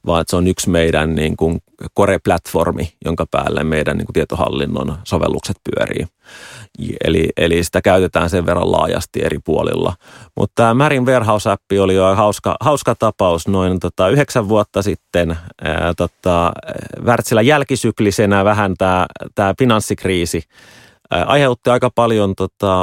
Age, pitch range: 30-49, 90-115 Hz